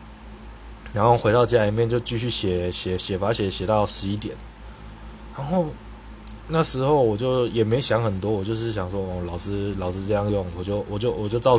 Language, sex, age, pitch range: Chinese, male, 20-39, 100-120 Hz